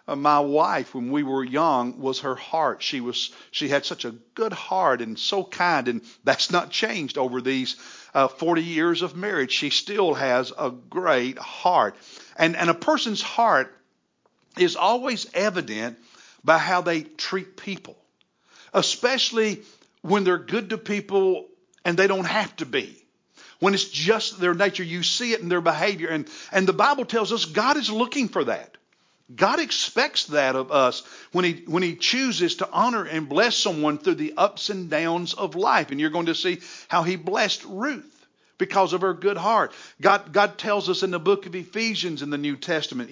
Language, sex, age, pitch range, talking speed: English, male, 60-79, 155-205 Hz, 185 wpm